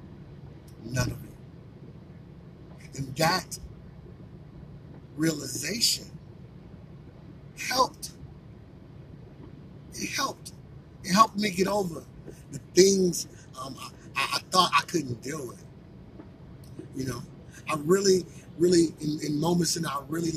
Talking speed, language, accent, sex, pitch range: 105 wpm, English, American, male, 145-165 Hz